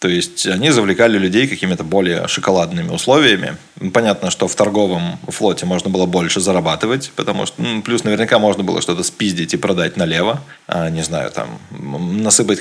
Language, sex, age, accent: Russian, male, 20-39, native